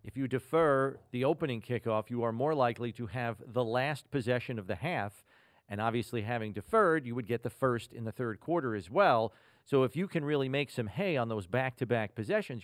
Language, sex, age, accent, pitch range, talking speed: English, male, 40-59, American, 115-145 Hz, 220 wpm